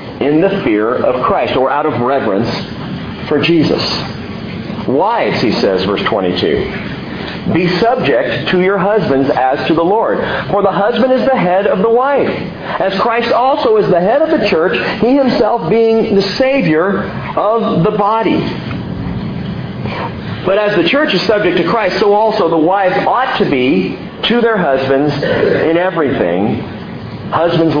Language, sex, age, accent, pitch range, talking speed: English, male, 50-69, American, 150-215 Hz, 155 wpm